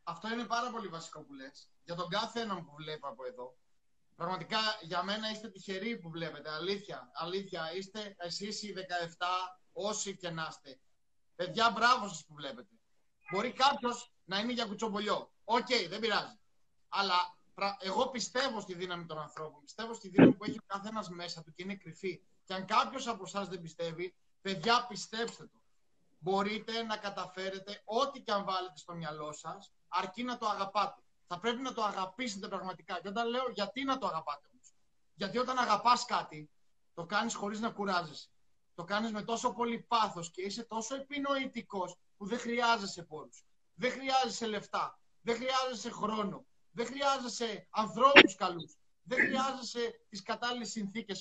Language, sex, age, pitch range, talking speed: Greek, male, 30-49, 175-235 Hz, 170 wpm